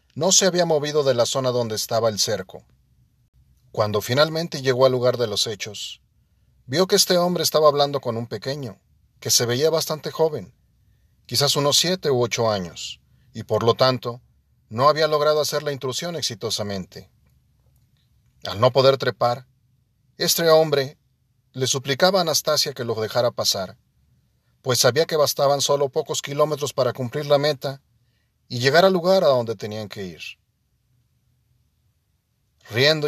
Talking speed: 155 wpm